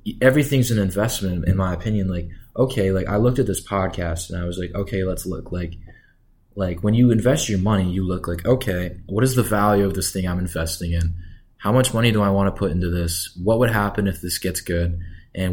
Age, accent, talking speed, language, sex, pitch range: 20-39, American, 230 wpm, English, male, 90-105 Hz